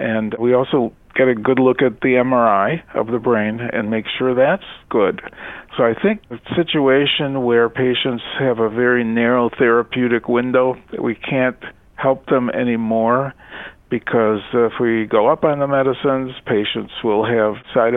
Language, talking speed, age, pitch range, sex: English, 165 wpm, 50-69, 115-145 Hz, male